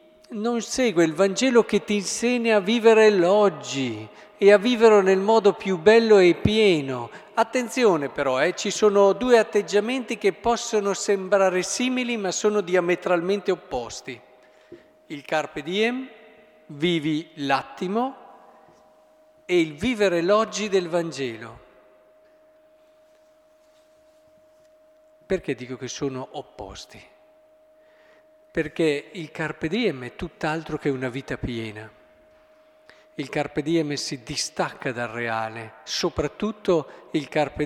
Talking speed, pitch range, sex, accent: 110 wpm, 165-240 Hz, male, native